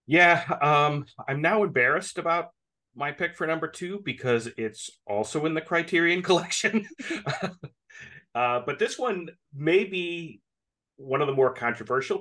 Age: 30-49